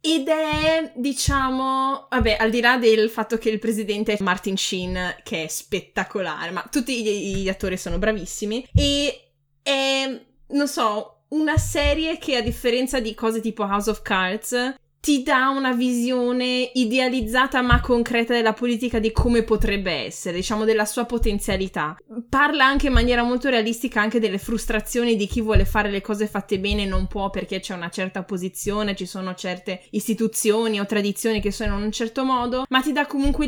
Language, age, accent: Italian, 20-39, native